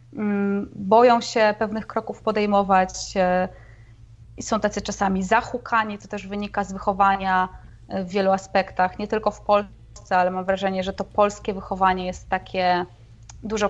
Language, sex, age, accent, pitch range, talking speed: Polish, female, 20-39, native, 195-235 Hz, 140 wpm